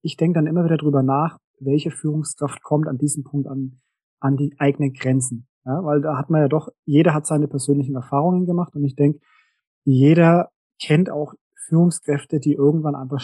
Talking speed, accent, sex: 185 wpm, German, male